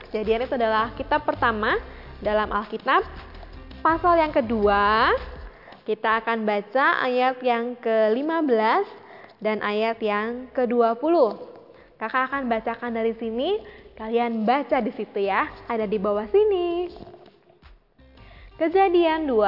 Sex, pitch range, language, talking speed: female, 225-300 Hz, Indonesian, 110 wpm